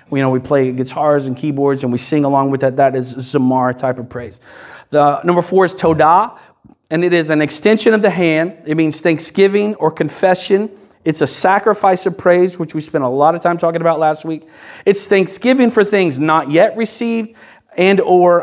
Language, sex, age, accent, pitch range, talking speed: English, male, 40-59, American, 155-205 Hz, 200 wpm